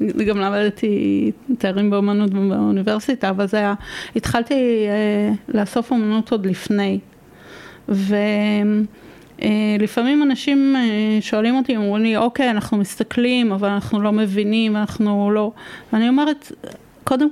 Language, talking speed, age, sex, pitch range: Hebrew, 120 wpm, 30-49, female, 205-235 Hz